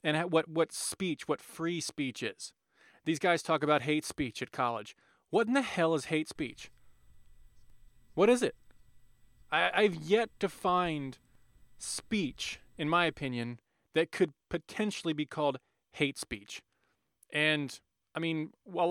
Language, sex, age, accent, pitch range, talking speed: English, male, 30-49, American, 130-165 Hz, 145 wpm